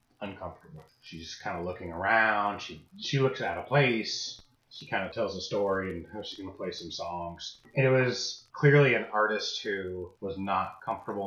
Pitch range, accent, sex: 95-130 Hz, American, male